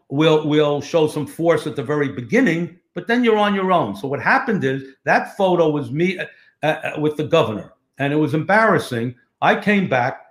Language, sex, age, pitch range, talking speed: English, male, 60-79, 140-175 Hz, 210 wpm